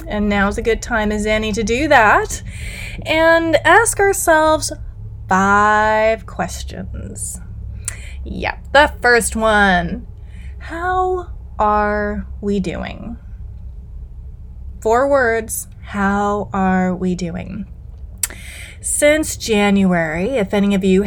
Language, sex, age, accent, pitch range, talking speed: English, female, 20-39, American, 185-260 Hz, 100 wpm